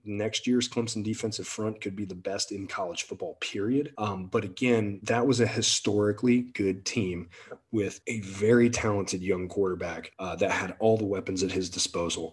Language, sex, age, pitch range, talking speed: English, male, 30-49, 95-110 Hz, 180 wpm